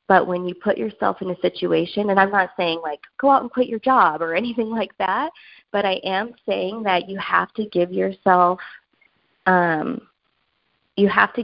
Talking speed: 195 wpm